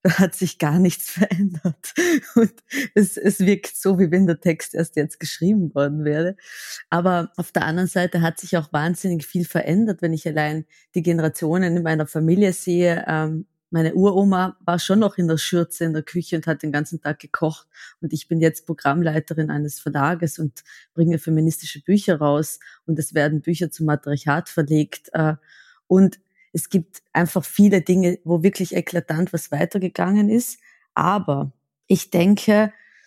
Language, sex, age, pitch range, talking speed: German, female, 30-49, 160-195 Hz, 165 wpm